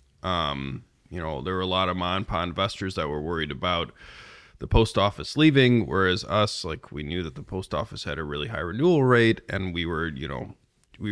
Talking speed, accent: 210 wpm, American